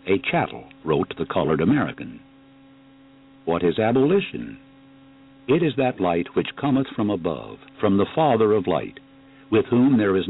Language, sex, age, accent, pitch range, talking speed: English, male, 60-79, American, 105-135 Hz, 150 wpm